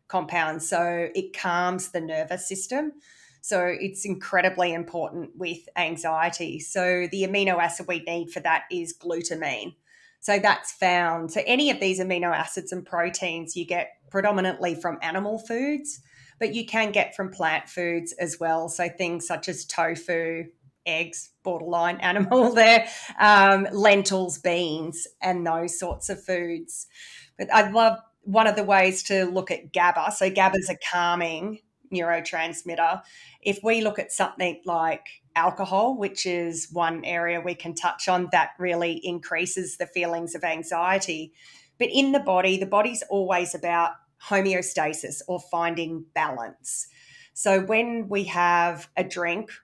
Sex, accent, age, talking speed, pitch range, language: female, Australian, 30-49, 150 wpm, 170-195 Hz, English